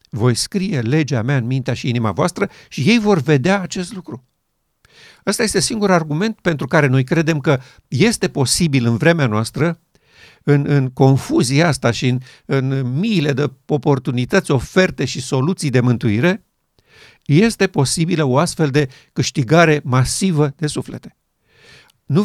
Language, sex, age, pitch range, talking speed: Romanian, male, 50-69, 130-175 Hz, 145 wpm